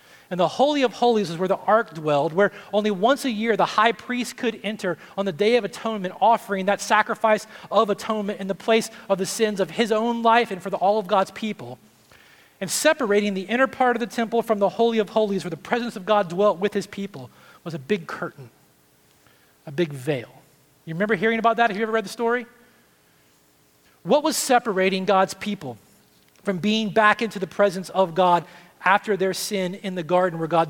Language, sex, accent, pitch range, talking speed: English, male, American, 155-215 Hz, 210 wpm